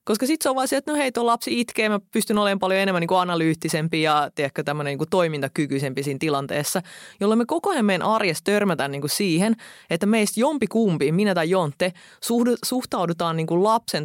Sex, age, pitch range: female, 20-39, 155-215 Hz